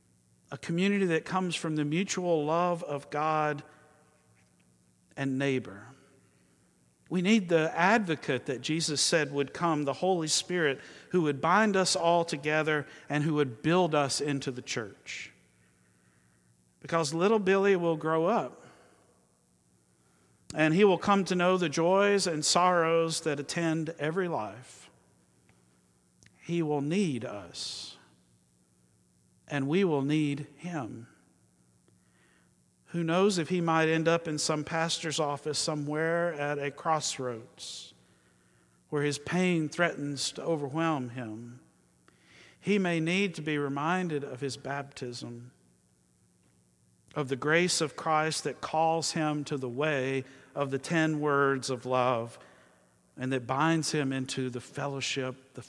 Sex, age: male, 50-69